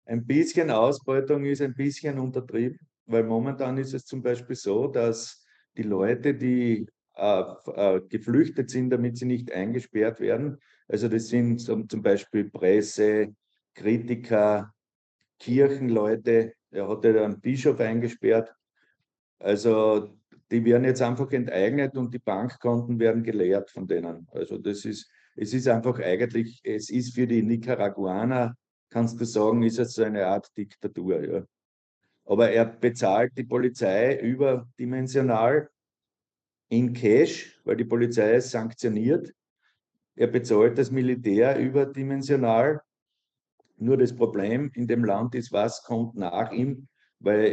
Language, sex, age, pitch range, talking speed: German, male, 50-69, 115-130 Hz, 135 wpm